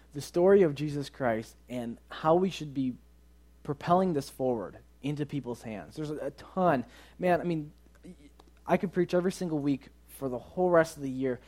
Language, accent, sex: English, American, male